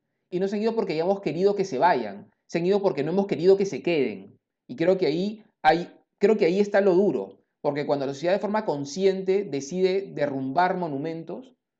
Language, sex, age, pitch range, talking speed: Spanish, male, 30-49, 130-175 Hz, 215 wpm